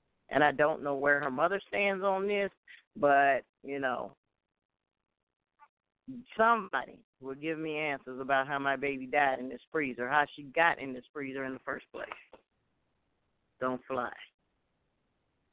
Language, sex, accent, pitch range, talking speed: English, female, American, 135-195 Hz, 145 wpm